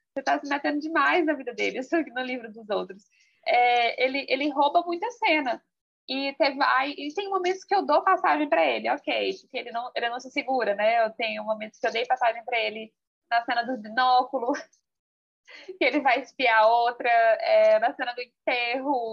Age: 20-39